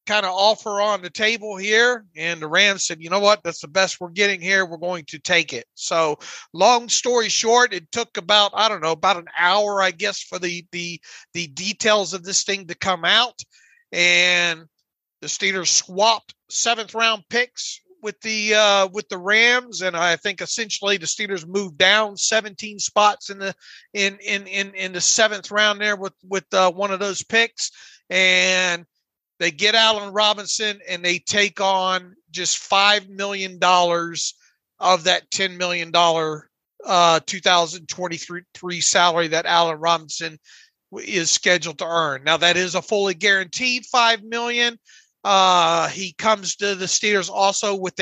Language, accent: English, American